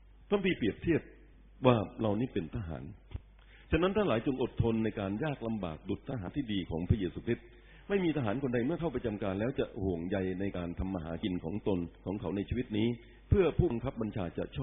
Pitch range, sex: 95-125 Hz, male